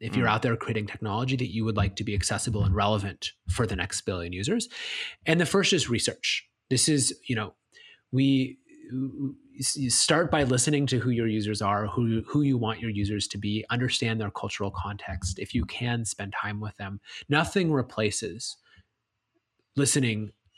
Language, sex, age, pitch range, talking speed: English, male, 30-49, 110-140 Hz, 180 wpm